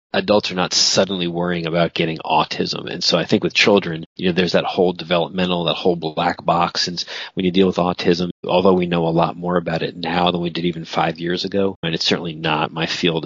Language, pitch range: English, 85-90 Hz